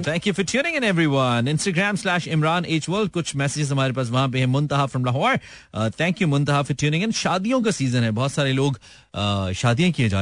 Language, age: Hindi, 40-59